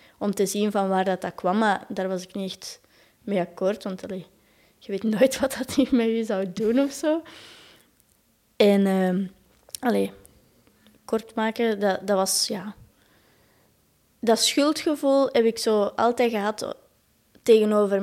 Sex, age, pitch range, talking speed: female, 20-39, 195-225 Hz, 155 wpm